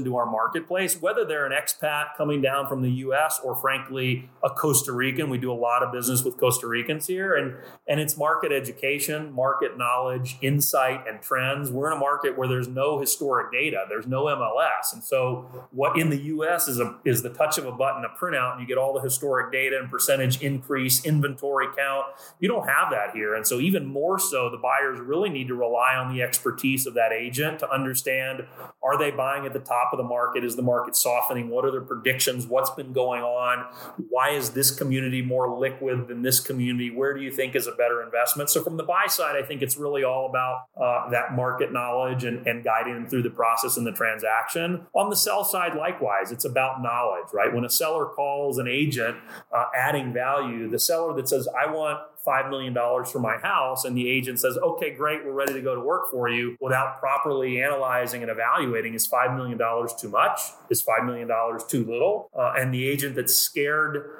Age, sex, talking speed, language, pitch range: 30-49, male, 210 wpm, English, 125-140 Hz